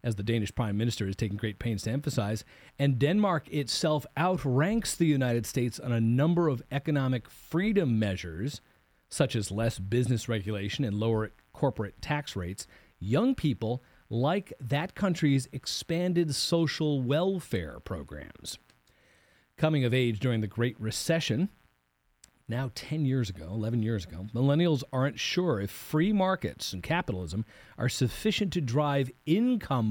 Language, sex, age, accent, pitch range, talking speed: English, male, 40-59, American, 110-150 Hz, 140 wpm